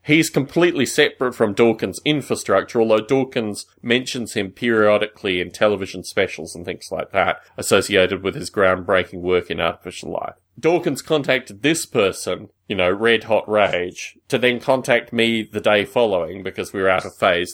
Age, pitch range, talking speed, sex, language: 30-49, 100-140 Hz, 165 wpm, male, English